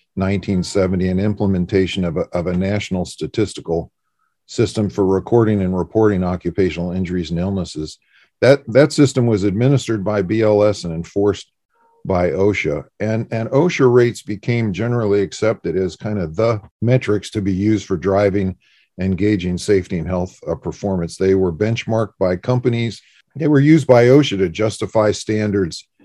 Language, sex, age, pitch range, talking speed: English, male, 50-69, 95-120 Hz, 150 wpm